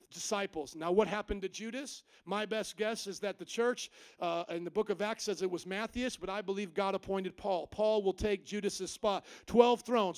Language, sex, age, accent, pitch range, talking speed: English, male, 40-59, American, 205-305 Hz, 210 wpm